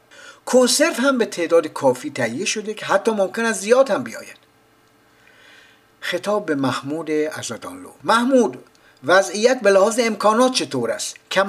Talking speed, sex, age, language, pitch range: 135 wpm, male, 60-79, Persian, 160-230 Hz